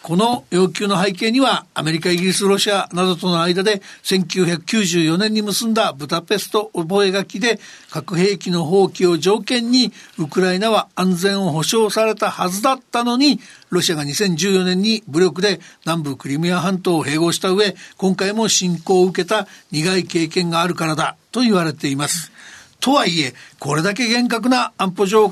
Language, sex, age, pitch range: Japanese, male, 60-79, 165-210 Hz